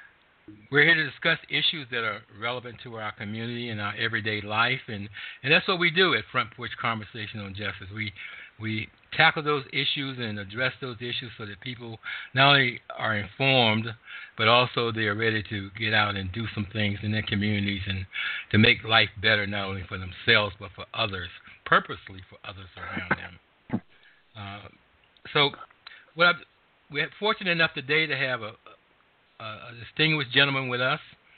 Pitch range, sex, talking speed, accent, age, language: 105-120 Hz, male, 170 wpm, American, 60-79, English